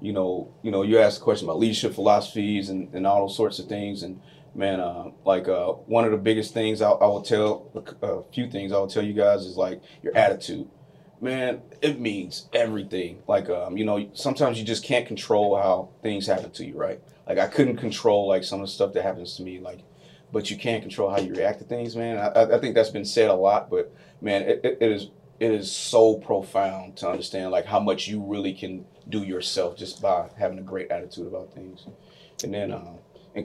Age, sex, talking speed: 30-49, male, 225 wpm